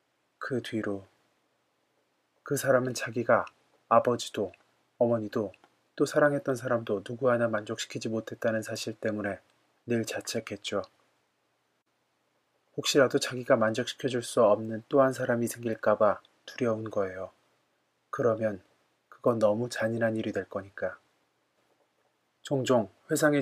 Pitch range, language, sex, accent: 110-125 Hz, Korean, male, native